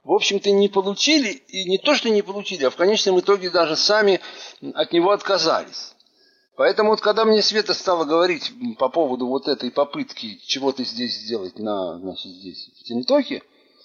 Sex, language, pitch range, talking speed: male, Russian, 140-235 Hz, 170 wpm